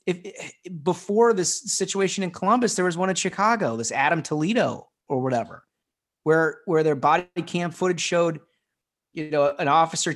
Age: 30-49